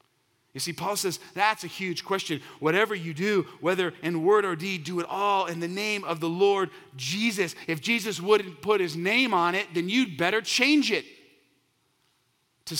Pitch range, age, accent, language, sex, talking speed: 140-205 Hz, 40-59, American, English, male, 190 wpm